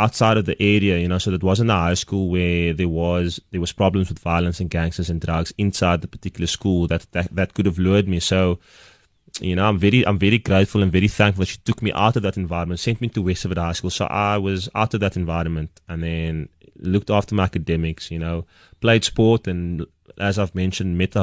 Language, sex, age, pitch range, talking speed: English, male, 20-39, 85-105 Hz, 235 wpm